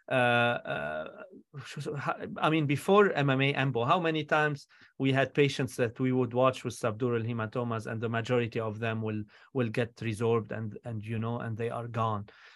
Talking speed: 170 wpm